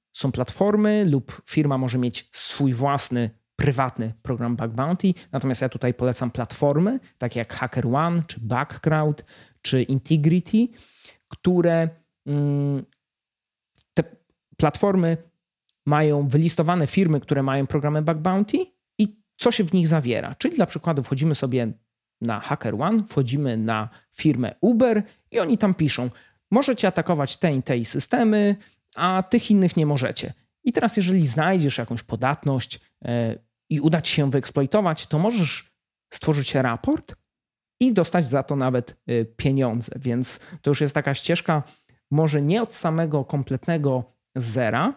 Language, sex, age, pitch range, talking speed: Polish, male, 30-49, 125-170 Hz, 135 wpm